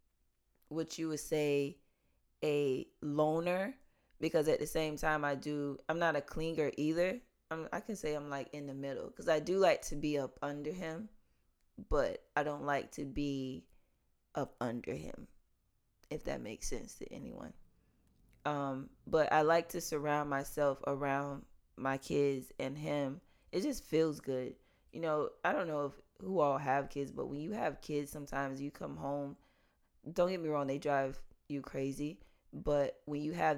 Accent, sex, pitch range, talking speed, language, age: American, female, 140-155 Hz, 175 wpm, English, 20-39